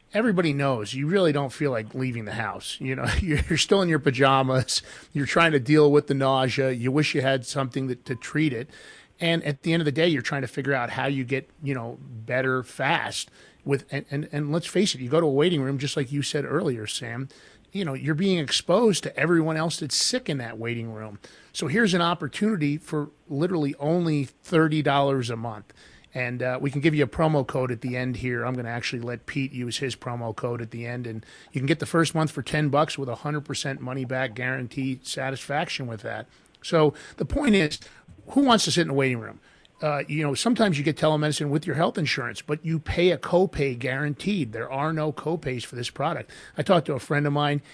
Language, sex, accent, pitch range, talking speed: English, male, American, 130-155 Hz, 230 wpm